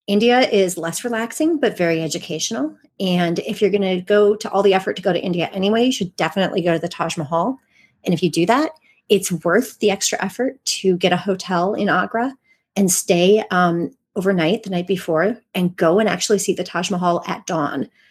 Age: 30-49